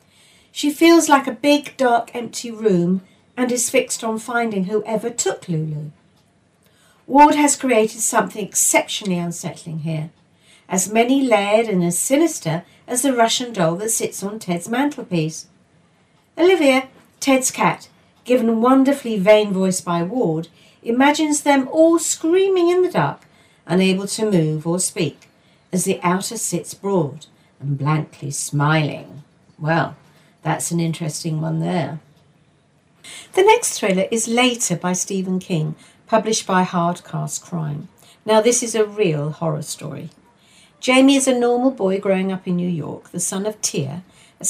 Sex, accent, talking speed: female, British, 145 wpm